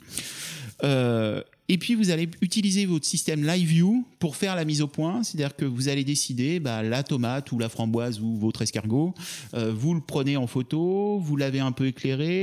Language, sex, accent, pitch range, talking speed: French, male, French, 125-170 Hz, 200 wpm